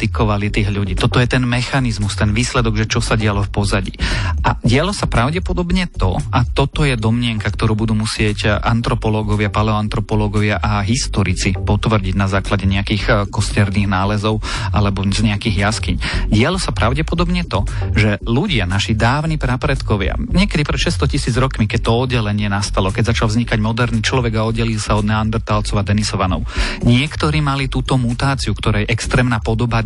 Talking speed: 155 wpm